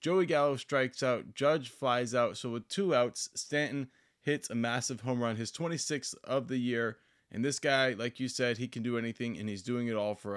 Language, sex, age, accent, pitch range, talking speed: English, male, 20-39, American, 120-150 Hz, 220 wpm